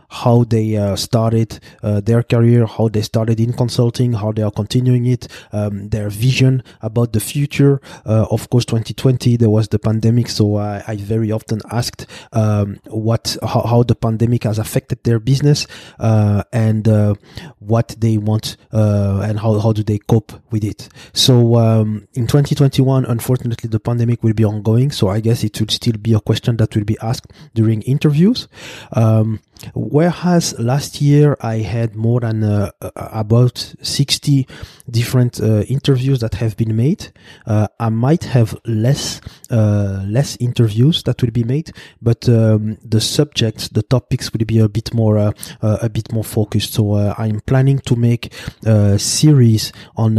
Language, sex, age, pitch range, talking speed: English, male, 20-39, 110-125 Hz, 170 wpm